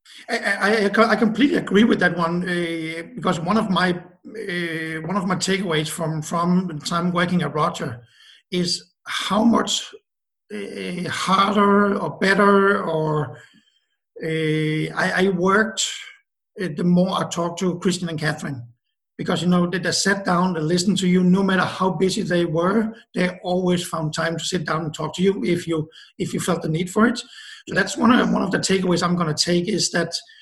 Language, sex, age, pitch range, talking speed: English, male, 60-79, 170-210 Hz, 195 wpm